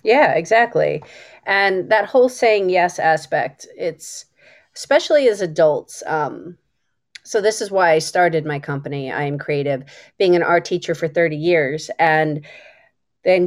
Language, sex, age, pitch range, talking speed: English, female, 30-49, 160-215 Hz, 145 wpm